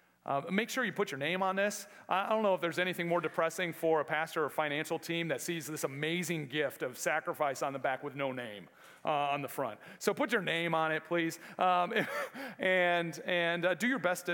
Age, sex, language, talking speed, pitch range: 40-59, male, English, 225 wpm, 140-175 Hz